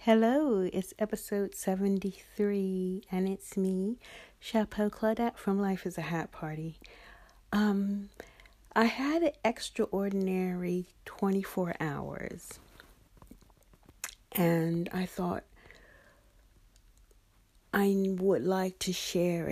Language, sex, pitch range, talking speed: English, female, 175-215 Hz, 90 wpm